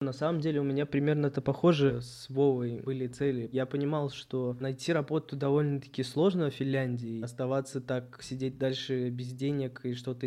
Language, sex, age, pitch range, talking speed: Russian, male, 20-39, 130-145 Hz, 170 wpm